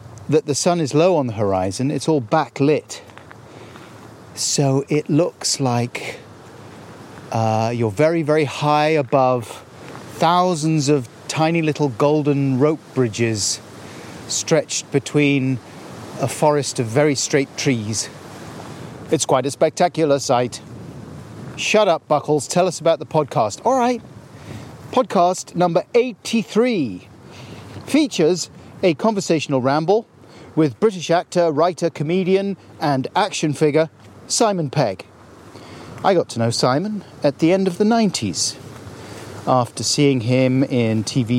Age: 40-59